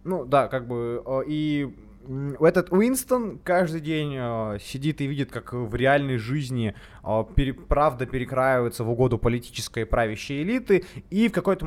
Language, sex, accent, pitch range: Ukrainian, male, native, 125-175 Hz